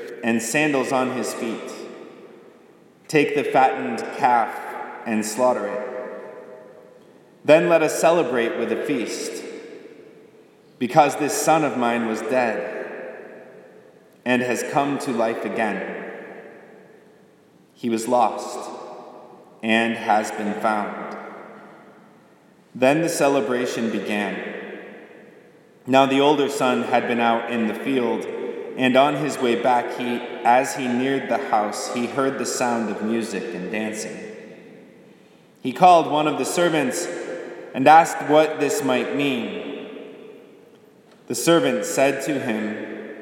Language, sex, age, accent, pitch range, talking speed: English, male, 30-49, American, 115-150 Hz, 125 wpm